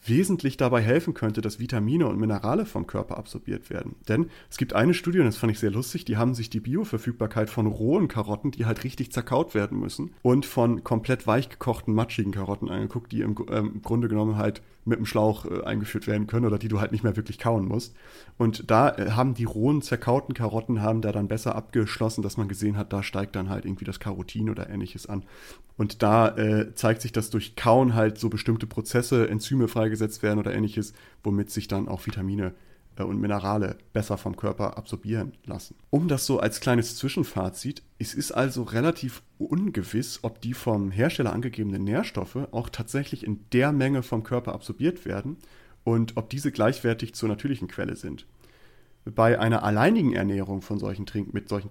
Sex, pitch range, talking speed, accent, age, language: male, 105-120 Hz, 195 wpm, German, 30-49, German